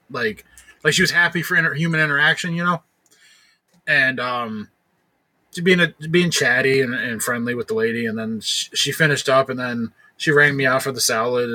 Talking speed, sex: 210 wpm, male